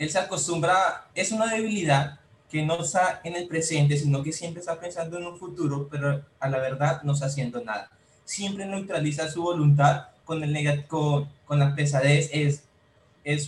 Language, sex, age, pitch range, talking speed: Spanish, male, 20-39, 145-180 Hz, 180 wpm